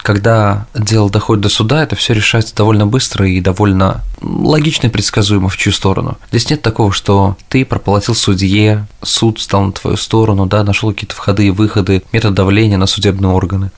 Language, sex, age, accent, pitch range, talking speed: Russian, male, 20-39, native, 100-115 Hz, 180 wpm